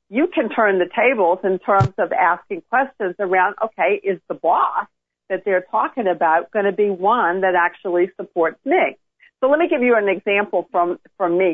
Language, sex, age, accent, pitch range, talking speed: English, female, 50-69, American, 170-215 Hz, 190 wpm